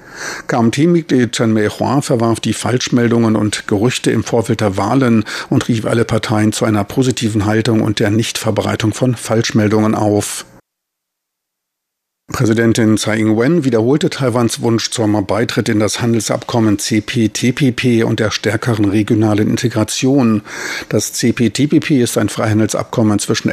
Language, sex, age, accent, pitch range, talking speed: German, male, 50-69, German, 105-120 Hz, 125 wpm